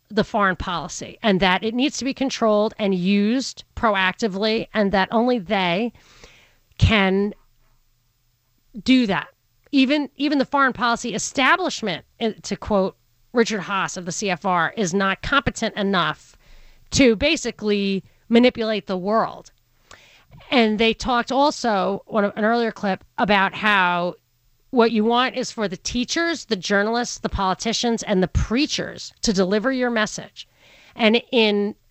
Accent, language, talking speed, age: American, English, 135 wpm, 40-59